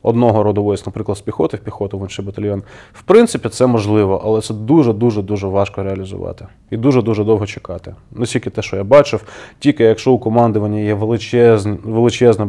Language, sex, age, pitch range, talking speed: Ukrainian, male, 20-39, 100-115 Hz, 170 wpm